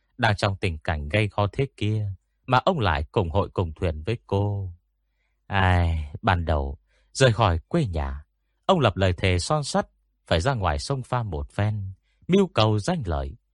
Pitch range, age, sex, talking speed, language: 80-115 Hz, 30-49, male, 185 wpm, Vietnamese